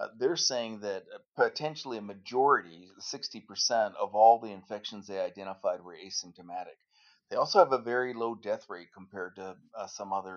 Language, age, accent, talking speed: English, 40-59, American, 175 wpm